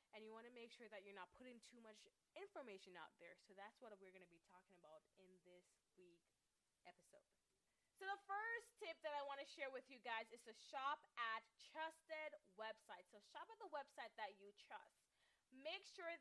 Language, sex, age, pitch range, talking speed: English, female, 20-39, 200-300 Hz, 205 wpm